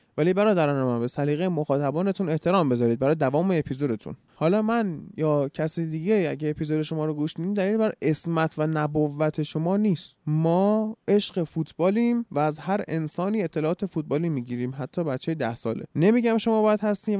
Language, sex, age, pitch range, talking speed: Persian, male, 20-39, 150-205 Hz, 165 wpm